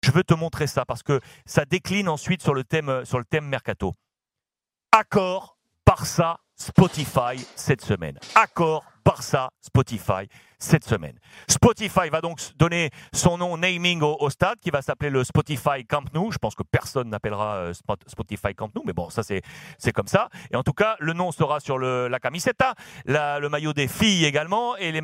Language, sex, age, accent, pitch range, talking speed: French, male, 40-59, French, 125-165 Hz, 195 wpm